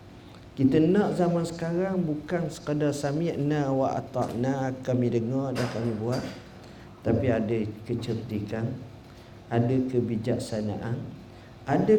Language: Malay